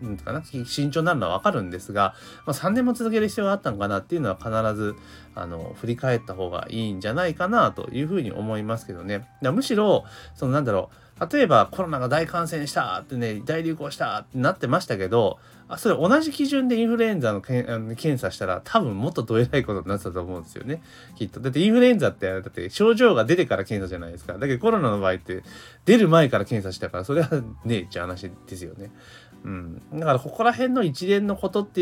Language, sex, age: Japanese, male, 30-49